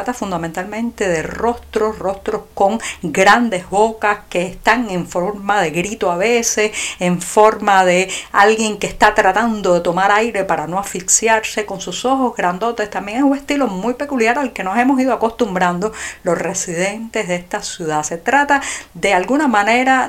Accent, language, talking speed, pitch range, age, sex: American, Spanish, 160 wpm, 180-230 Hz, 50-69, female